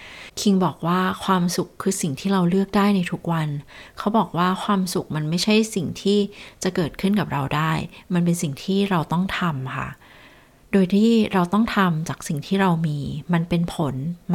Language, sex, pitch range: Thai, female, 155-190 Hz